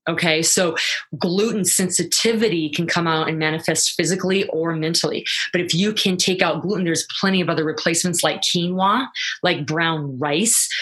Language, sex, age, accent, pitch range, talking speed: English, female, 20-39, American, 160-185 Hz, 160 wpm